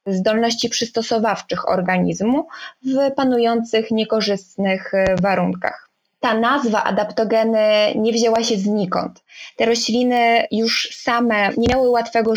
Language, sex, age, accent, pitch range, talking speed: Polish, female, 20-39, native, 200-235 Hz, 100 wpm